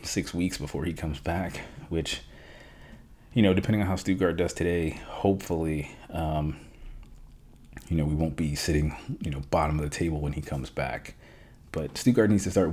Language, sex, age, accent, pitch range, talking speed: English, male, 30-49, American, 75-95 Hz, 180 wpm